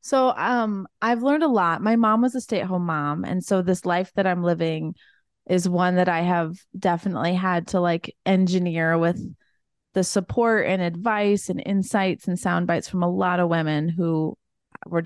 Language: English